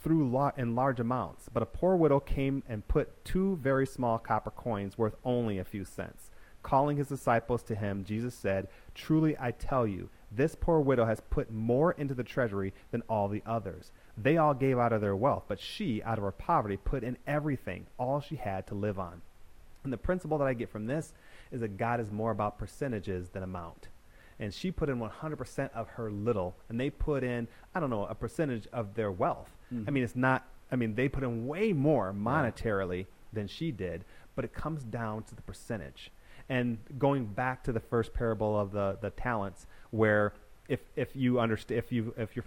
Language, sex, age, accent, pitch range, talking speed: English, male, 30-49, American, 100-130 Hz, 210 wpm